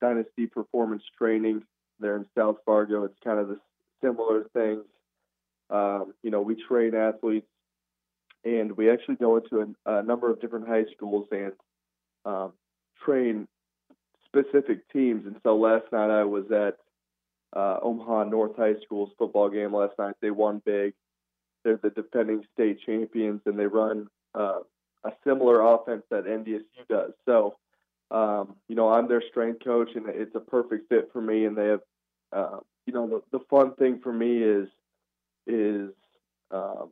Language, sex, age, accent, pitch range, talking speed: English, male, 20-39, American, 100-115 Hz, 165 wpm